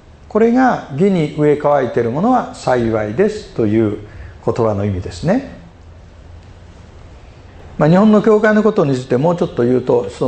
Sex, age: male, 50-69